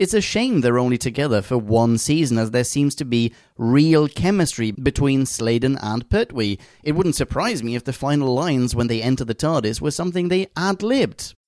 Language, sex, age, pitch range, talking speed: English, male, 30-49, 120-175 Hz, 195 wpm